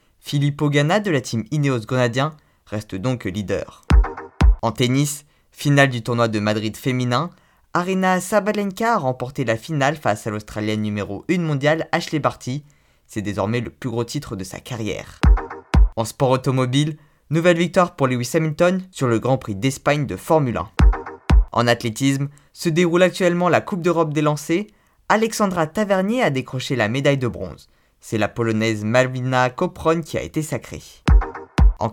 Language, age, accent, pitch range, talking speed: French, 20-39, French, 115-155 Hz, 160 wpm